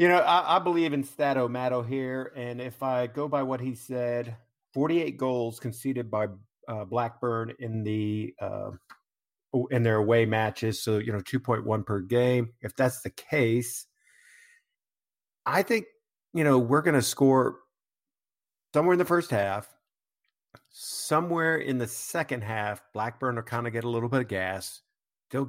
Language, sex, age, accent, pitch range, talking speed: English, male, 50-69, American, 110-130 Hz, 160 wpm